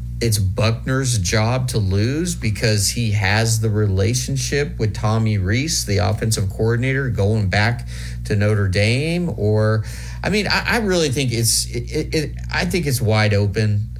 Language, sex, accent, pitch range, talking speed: English, male, American, 95-115 Hz, 160 wpm